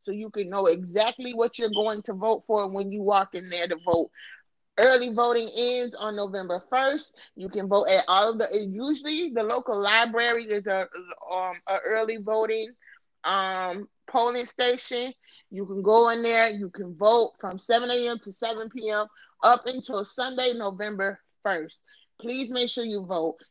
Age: 30-49